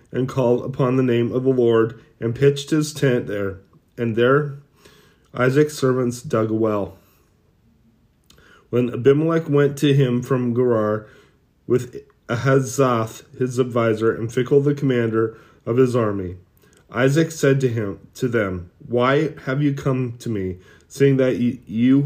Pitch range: 115-135 Hz